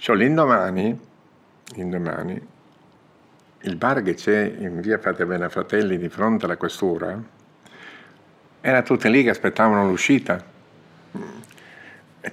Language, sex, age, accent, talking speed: Italian, male, 50-69, native, 105 wpm